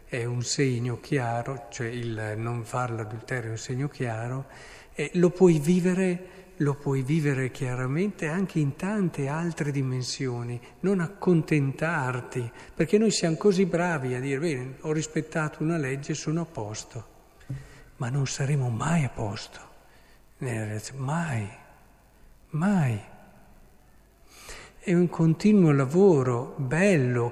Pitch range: 125-170 Hz